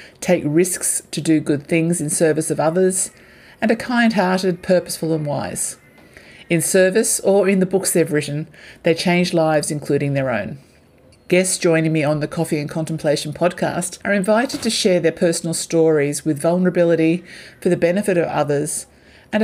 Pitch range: 145-180 Hz